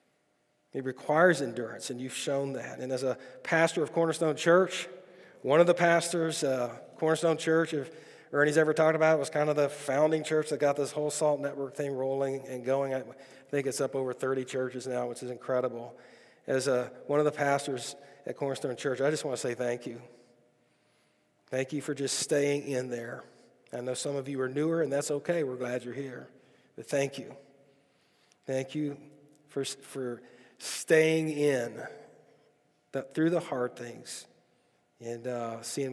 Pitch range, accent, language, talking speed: 130-155 Hz, American, English, 175 wpm